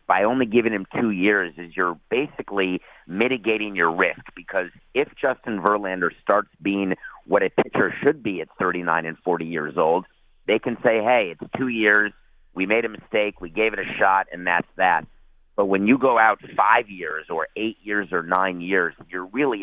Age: 50-69